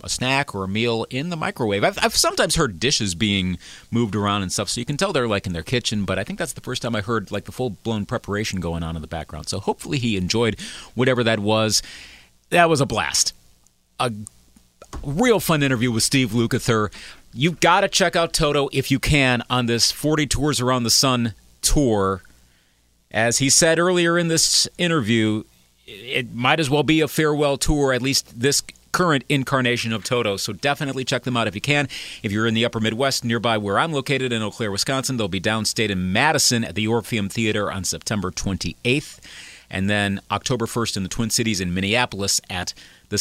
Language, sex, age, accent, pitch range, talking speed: English, male, 40-59, American, 95-130 Hz, 205 wpm